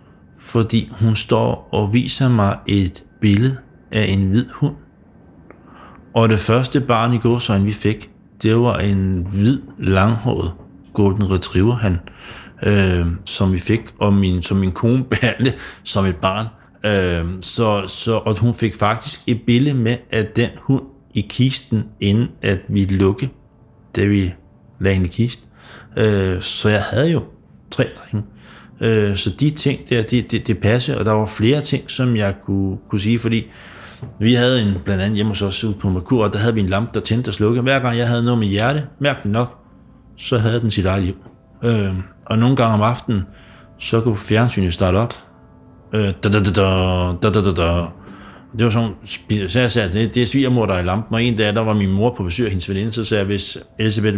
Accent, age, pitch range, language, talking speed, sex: native, 60-79, 100-120 Hz, Danish, 185 wpm, male